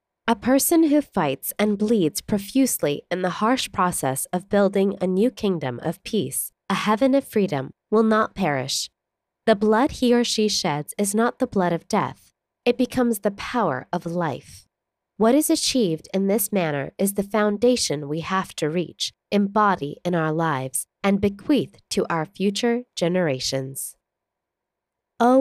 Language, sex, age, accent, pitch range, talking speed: English, female, 20-39, American, 170-225 Hz, 160 wpm